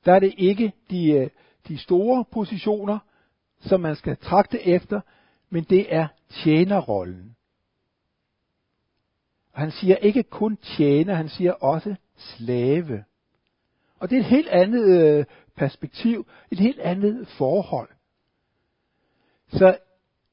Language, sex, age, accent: Danish, male, 60-79, native